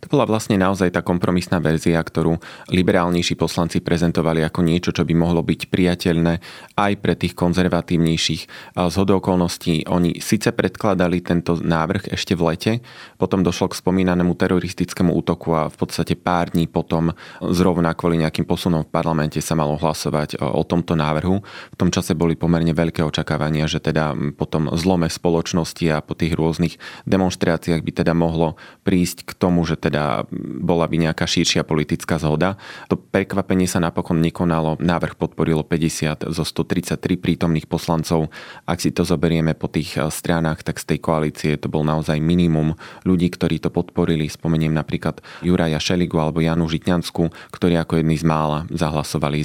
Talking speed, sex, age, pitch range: 160 wpm, male, 30-49, 80-90 Hz